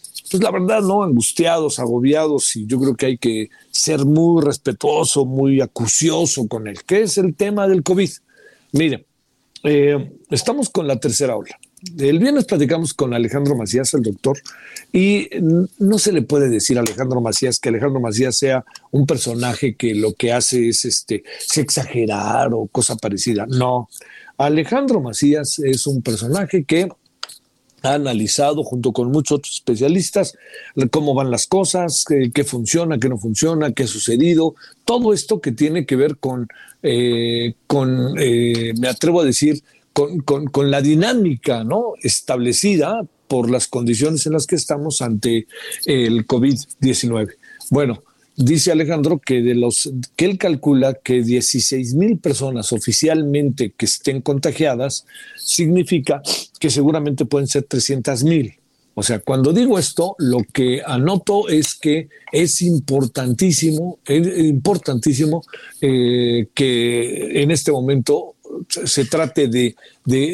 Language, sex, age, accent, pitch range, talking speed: Spanish, male, 50-69, Mexican, 125-160 Hz, 145 wpm